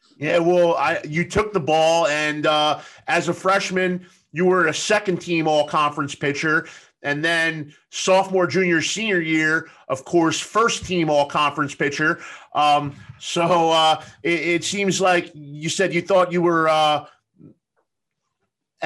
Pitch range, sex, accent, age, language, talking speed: 155-195 Hz, male, American, 30-49, English, 135 wpm